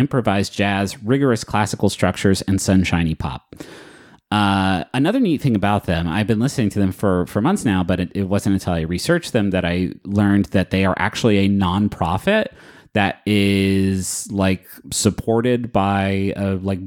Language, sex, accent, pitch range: English, male, American, 95-110 Hz